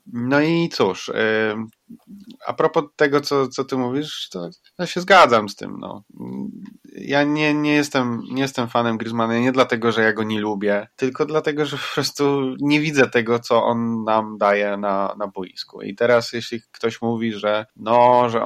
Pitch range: 105-120 Hz